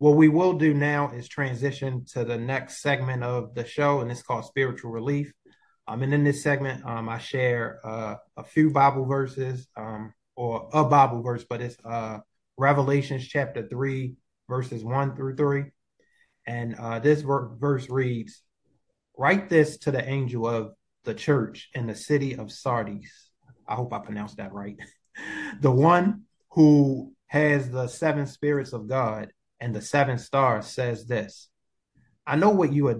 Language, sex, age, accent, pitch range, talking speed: English, male, 20-39, American, 120-145 Hz, 165 wpm